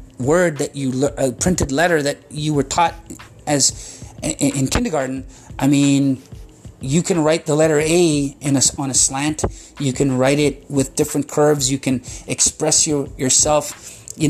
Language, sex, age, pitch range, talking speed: English, male, 30-49, 130-155 Hz, 165 wpm